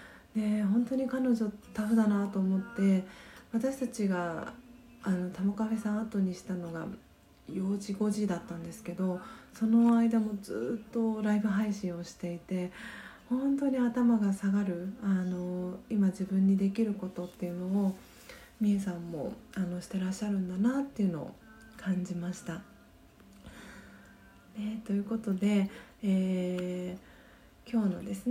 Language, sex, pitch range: Japanese, female, 180-225 Hz